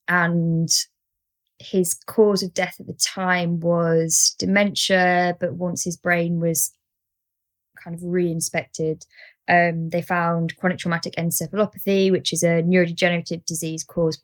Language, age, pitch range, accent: English, 20-39, 165-185 Hz, British